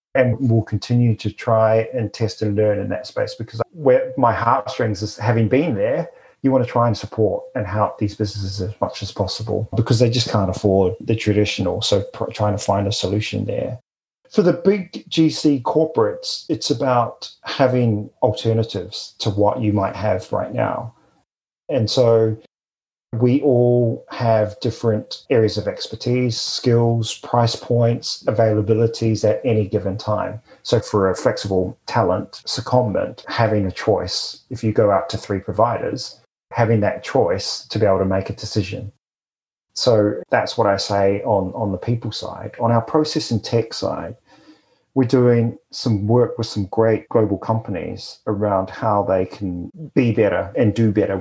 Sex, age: male, 40-59